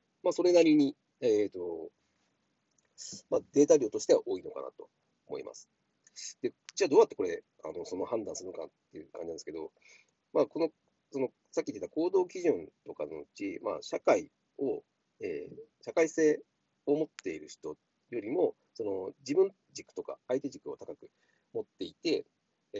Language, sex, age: Japanese, male, 40-59